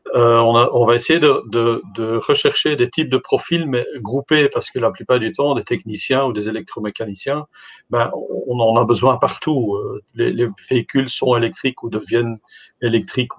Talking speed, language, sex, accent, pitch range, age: 185 wpm, French, male, French, 115-145 Hz, 50-69